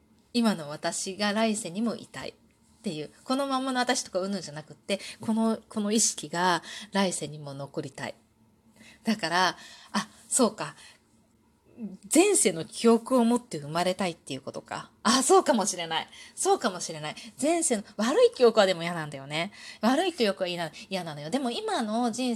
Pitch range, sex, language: 180-255 Hz, female, Japanese